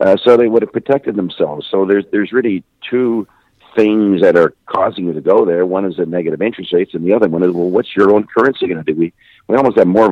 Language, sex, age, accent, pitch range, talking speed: English, male, 50-69, American, 90-110 Hz, 260 wpm